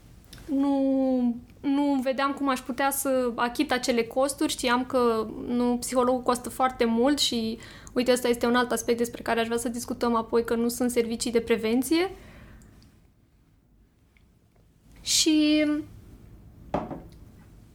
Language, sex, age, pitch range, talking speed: Romanian, female, 20-39, 240-290 Hz, 130 wpm